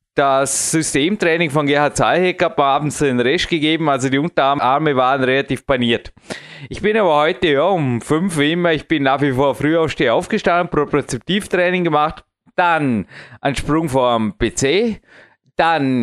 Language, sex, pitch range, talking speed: German, male, 135-170 Hz, 155 wpm